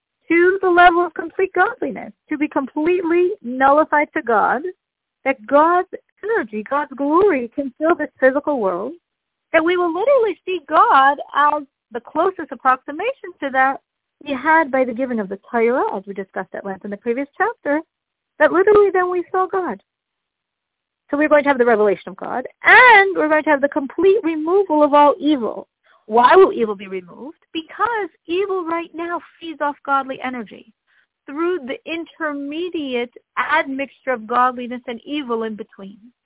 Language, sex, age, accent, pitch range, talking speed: English, female, 50-69, American, 250-350 Hz, 165 wpm